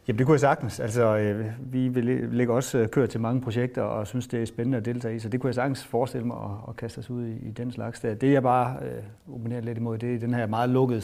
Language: Danish